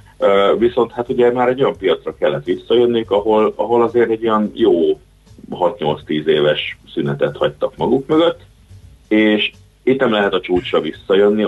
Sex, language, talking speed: male, Hungarian, 145 wpm